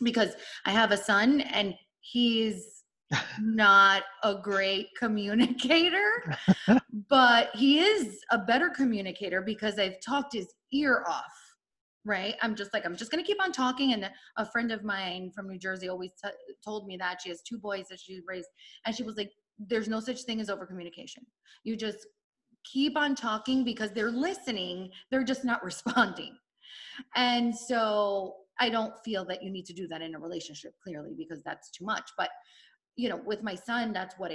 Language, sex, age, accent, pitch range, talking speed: English, female, 20-39, American, 190-235 Hz, 180 wpm